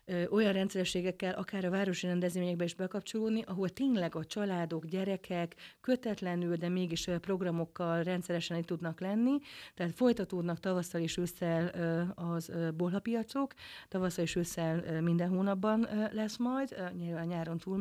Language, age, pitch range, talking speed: Hungarian, 40-59, 175-200 Hz, 125 wpm